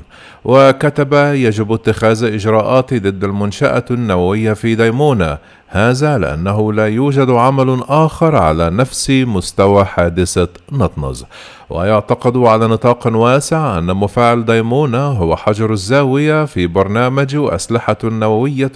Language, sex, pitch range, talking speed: Arabic, male, 105-135 Hz, 110 wpm